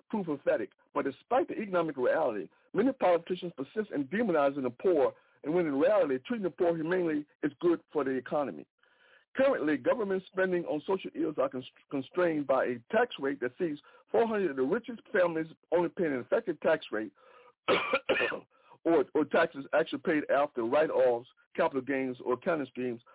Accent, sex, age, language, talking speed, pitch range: American, male, 60-79, English, 165 wpm, 145-220 Hz